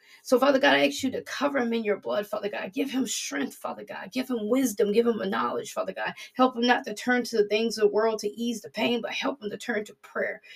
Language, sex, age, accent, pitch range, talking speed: English, female, 30-49, American, 190-230 Hz, 285 wpm